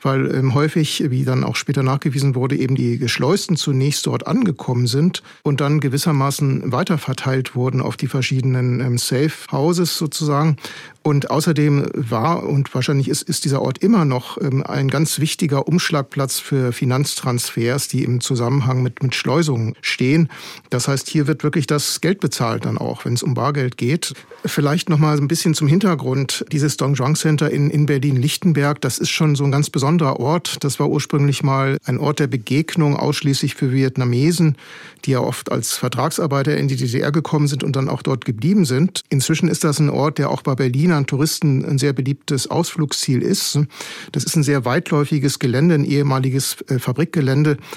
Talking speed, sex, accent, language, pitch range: 175 wpm, male, German, German, 135-155 Hz